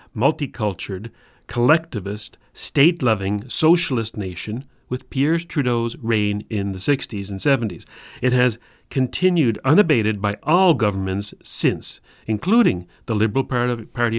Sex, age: male, 40-59